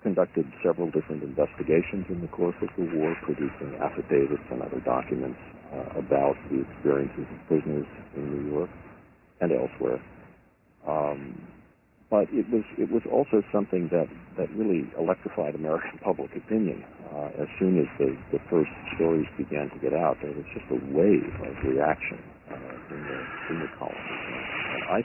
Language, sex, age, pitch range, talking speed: English, male, 60-79, 70-90 Hz, 160 wpm